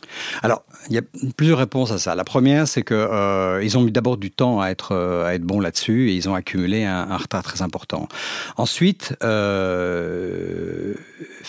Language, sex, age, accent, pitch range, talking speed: French, male, 50-69, French, 95-125 Hz, 190 wpm